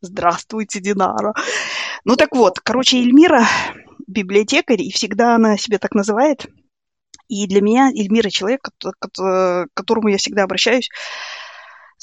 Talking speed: 120 wpm